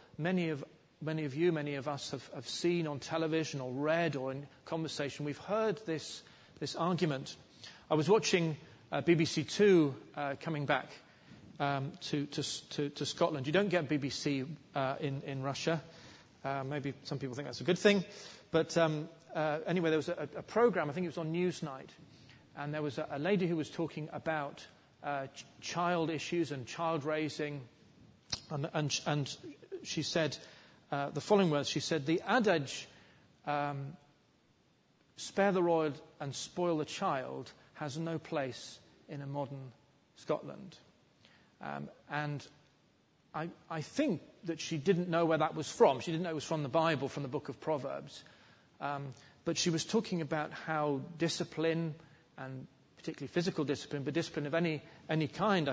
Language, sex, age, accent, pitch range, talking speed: English, male, 40-59, British, 140-165 Hz, 170 wpm